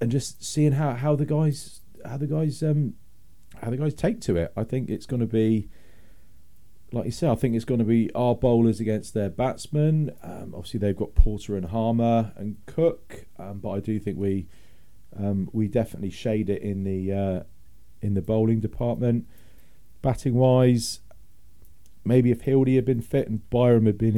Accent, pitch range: British, 90-120 Hz